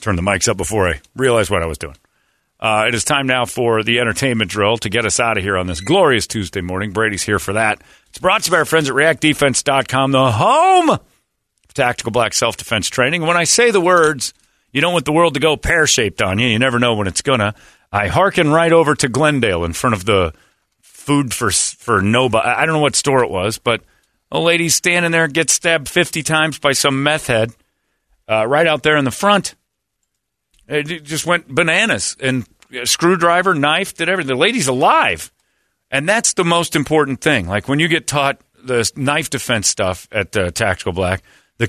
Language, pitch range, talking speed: English, 115-155 Hz, 210 wpm